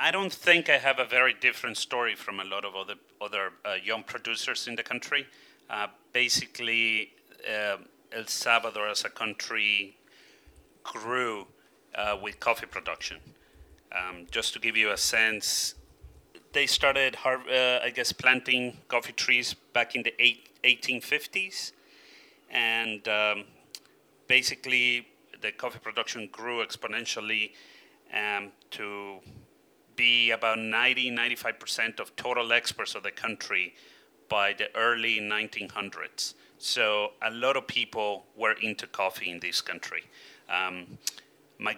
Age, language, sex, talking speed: 30-49, English, male, 130 wpm